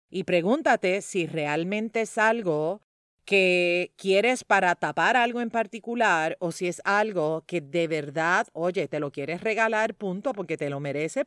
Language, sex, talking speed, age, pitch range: Spanish, female, 160 wpm, 40-59, 165-220 Hz